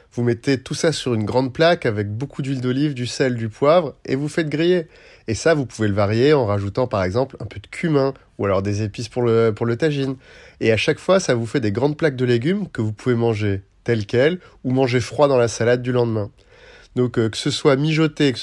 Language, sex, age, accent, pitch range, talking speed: French, male, 30-49, French, 115-150 Hz, 245 wpm